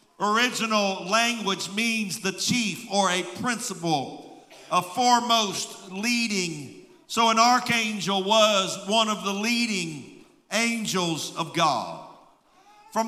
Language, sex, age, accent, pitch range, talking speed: English, male, 50-69, American, 190-235 Hz, 105 wpm